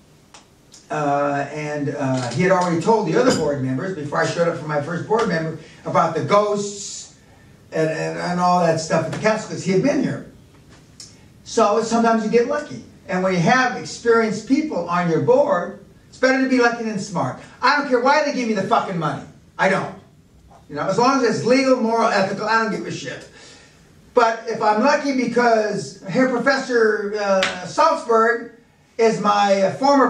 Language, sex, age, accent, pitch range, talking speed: English, male, 50-69, American, 165-235 Hz, 190 wpm